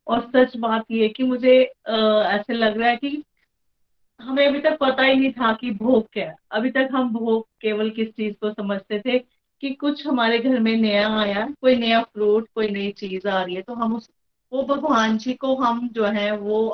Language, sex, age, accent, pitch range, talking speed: Hindi, female, 30-49, native, 210-260 Hz, 220 wpm